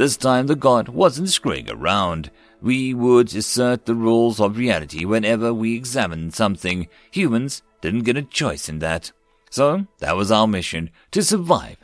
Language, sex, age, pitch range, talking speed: English, male, 50-69, 105-140 Hz, 160 wpm